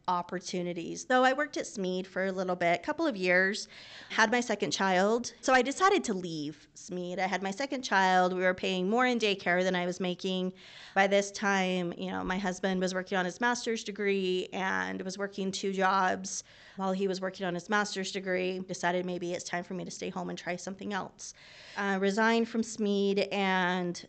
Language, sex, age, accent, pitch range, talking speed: English, female, 20-39, American, 180-215 Hz, 205 wpm